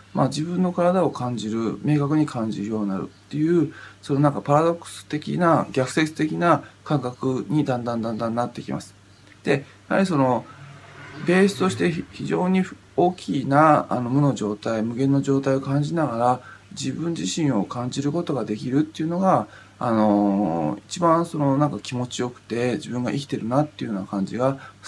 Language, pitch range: Japanese, 100-145 Hz